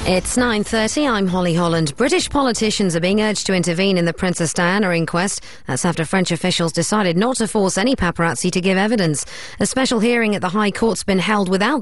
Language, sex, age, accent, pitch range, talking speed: English, female, 40-59, British, 165-215 Hz, 205 wpm